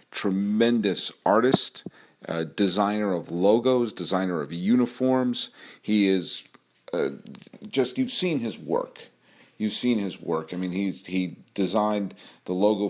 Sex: male